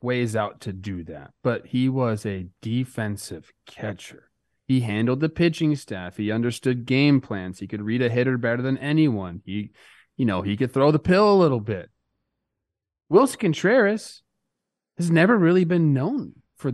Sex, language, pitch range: male, English, 115-165 Hz